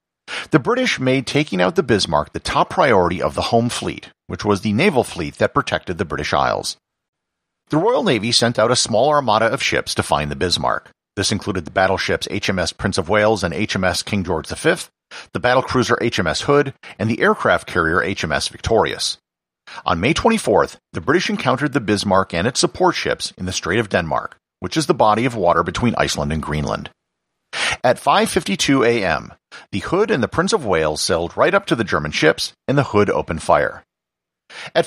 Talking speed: 195 wpm